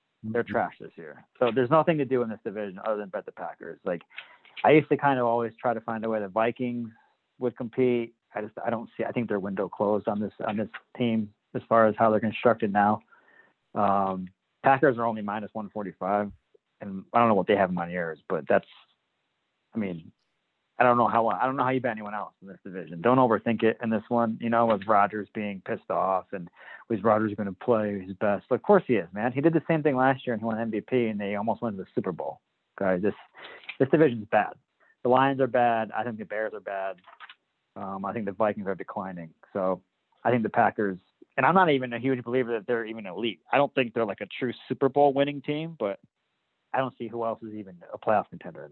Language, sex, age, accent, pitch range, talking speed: English, male, 30-49, American, 105-125 Hz, 240 wpm